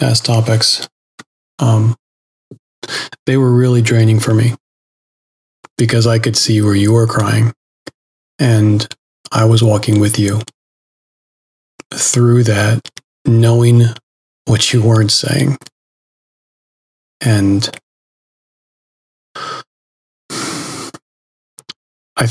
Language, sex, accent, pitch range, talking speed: English, male, American, 110-120 Hz, 85 wpm